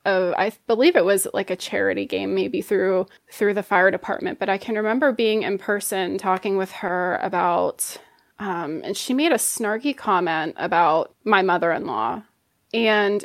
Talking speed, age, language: 170 wpm, 20-39, English